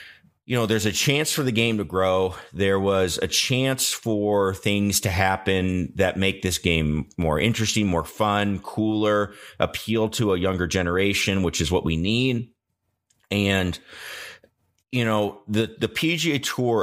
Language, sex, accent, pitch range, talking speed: English, male, American, 90-110 Hz, 155 wpm